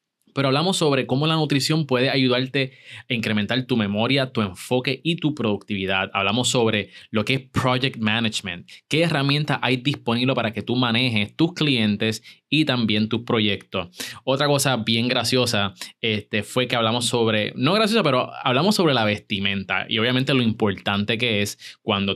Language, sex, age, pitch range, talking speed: Spanish, male, 20-39, 105-140 Hz, 165 wpm